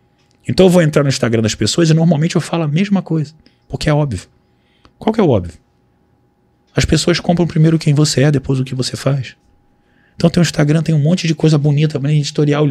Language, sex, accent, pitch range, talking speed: Portuguese, male, Brazilian, 105-165 Hz, 220 wpm